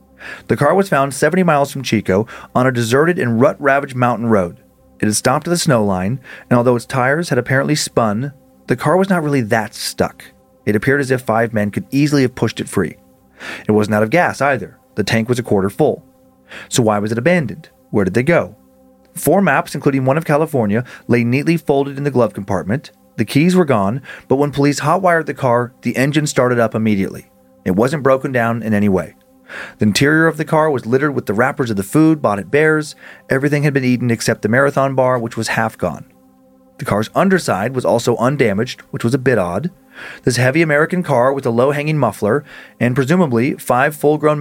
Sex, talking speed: male, 210 wpm